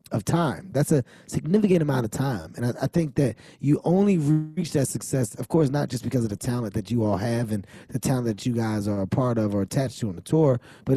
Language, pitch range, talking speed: English, 115-145 Hz, 255 wpm